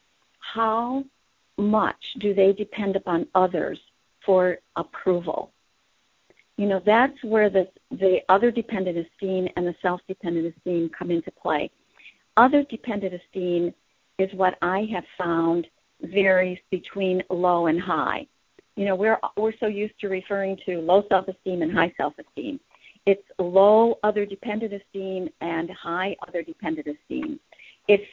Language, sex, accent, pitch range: English, female, American, 185-210 Hz